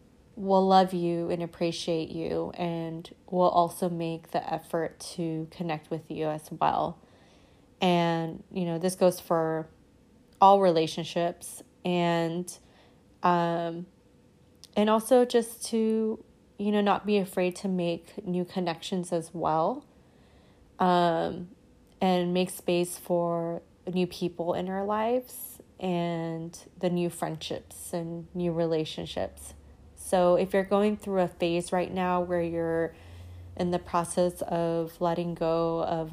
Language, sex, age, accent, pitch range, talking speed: English, female, 20-39, American, 165-185 Hz, 130 wpm